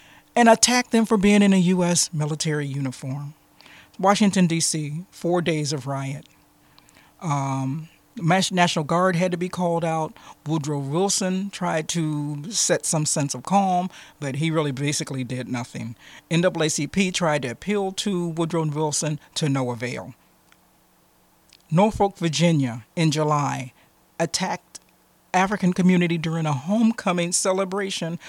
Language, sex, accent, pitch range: English, male, American, 150-195 Hz